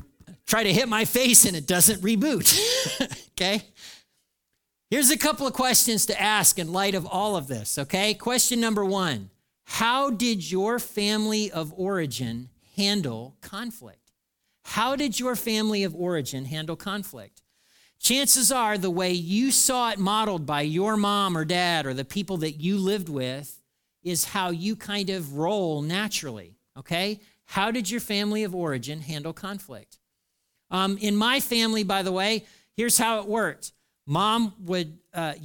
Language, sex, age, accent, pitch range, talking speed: English, male, 40-59, American, 155-215 Hz, 155 wpm